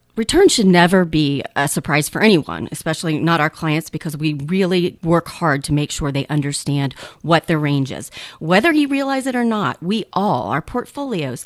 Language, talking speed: English, 190 wpm